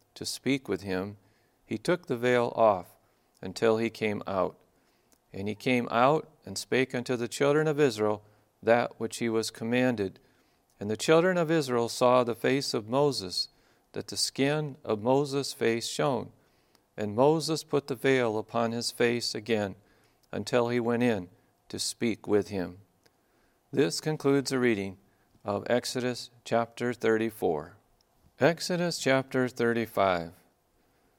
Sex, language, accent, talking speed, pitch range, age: male, English, American, 140 wpm, 105-140 Hz, 40-59